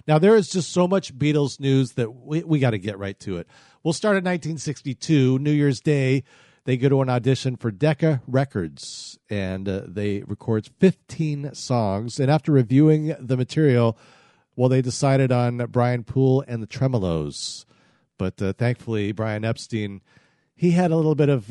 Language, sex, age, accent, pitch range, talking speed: English, male, 40-59, American, 110-150 Hz, 175 wpm